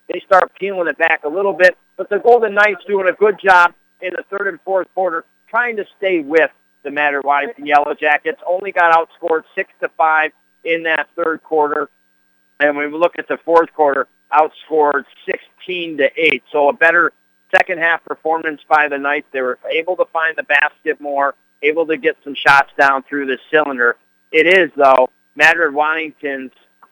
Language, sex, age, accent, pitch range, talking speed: English, male, 50-69, American, 140-165 Hz, 185 wpm